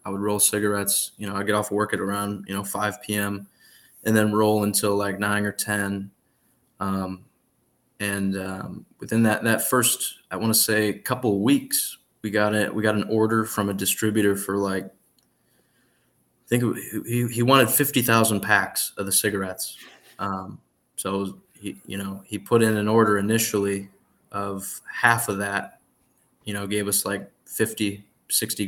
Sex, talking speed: male, 175 wpm